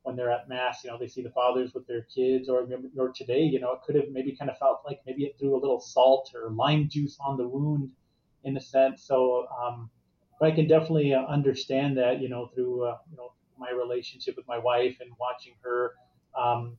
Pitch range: 125-145 Hz